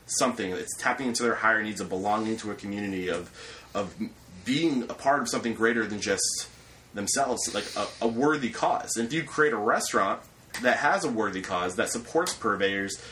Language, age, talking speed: English, 30-49, 190 wpm